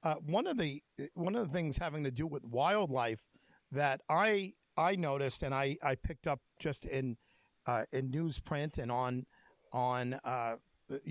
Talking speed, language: 165 wpm, English